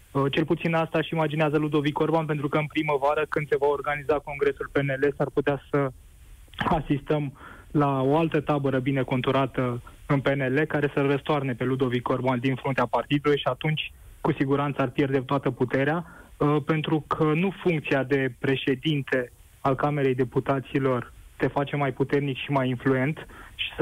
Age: 20-39